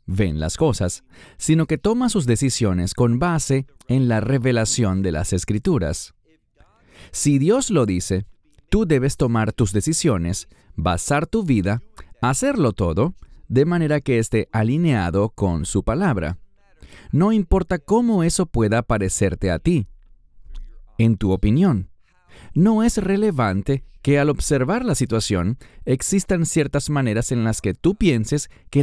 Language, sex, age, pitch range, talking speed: English, male, 30-49, 100-155 Hz, 135 wpm